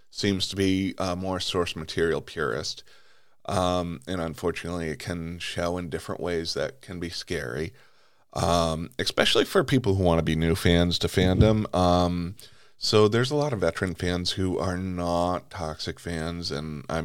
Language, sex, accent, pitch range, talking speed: English, male, American, 90-105 Hz, 170 wpm